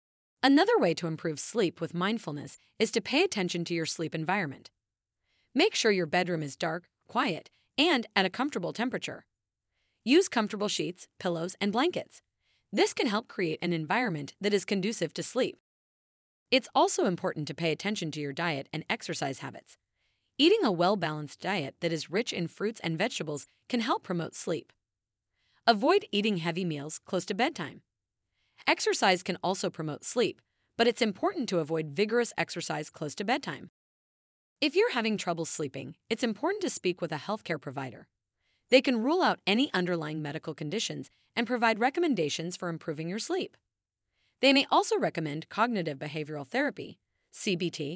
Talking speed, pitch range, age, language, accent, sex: 160 wpm, 155-235 Hz, 30-49, English, American, female